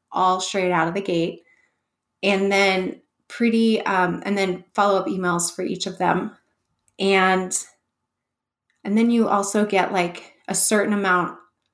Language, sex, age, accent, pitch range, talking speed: English, female, 30-49, American, 175-205 Hz, 145 wpm